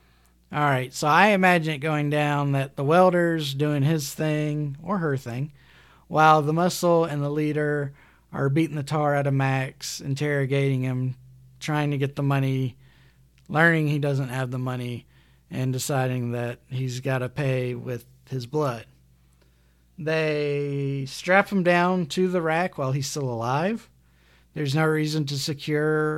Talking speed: 155 wpm